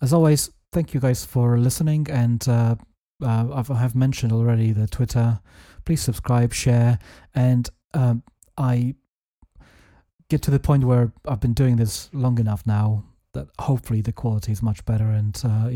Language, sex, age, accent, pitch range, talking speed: English, male, 30-49, British, 105-120 Hz, 170 wpm